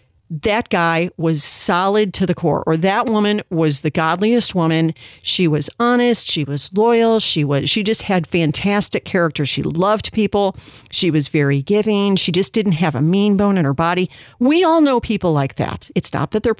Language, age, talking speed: English, 50-69, 195 wpm